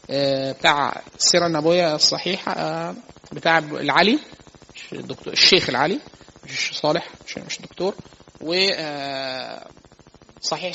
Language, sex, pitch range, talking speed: Arabic, male, 155-185 Hz, 80 wpm